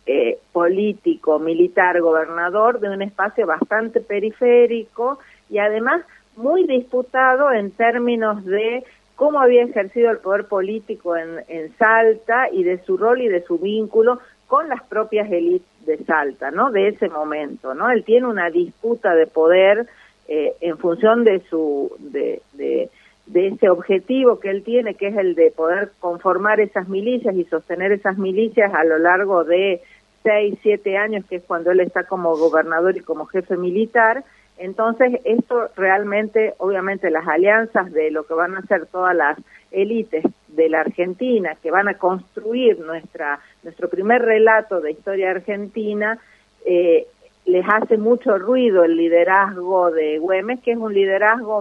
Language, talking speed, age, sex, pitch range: Spanish, 155 wpm, 50-69, female, 180-230 Hz